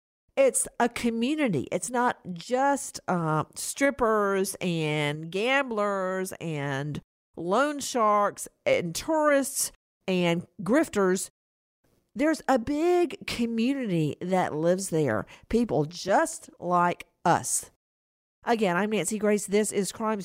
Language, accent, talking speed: English, American, 105 wpm